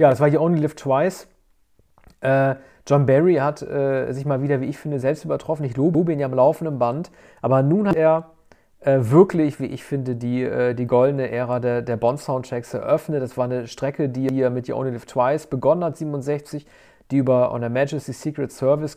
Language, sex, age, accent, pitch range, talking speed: German, male, 40-59, German, 125-150 Hz, 210 wpm